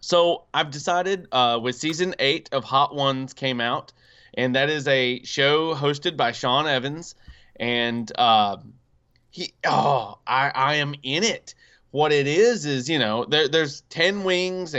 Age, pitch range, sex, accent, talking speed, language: 20-39, 125-160 Hz, male, American, 160 wpm, English